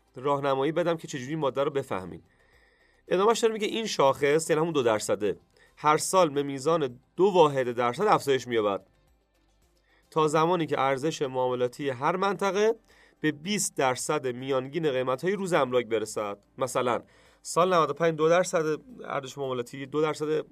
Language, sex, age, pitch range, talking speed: Persian, male, 30-49, 130-175 Hz, 150 wpm